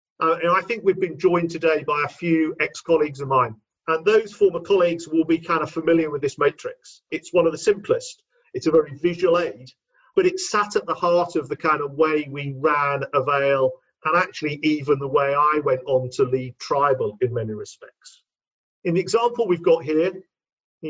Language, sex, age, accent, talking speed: English, male, 50-69, British, 205 wpm